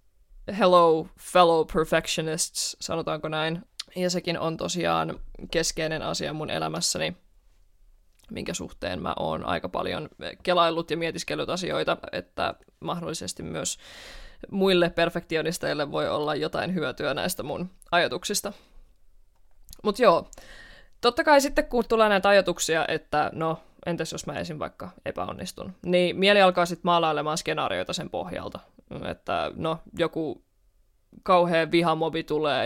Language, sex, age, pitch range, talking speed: Finnish, female, 20-39, 150-215 Hz, 120 wpm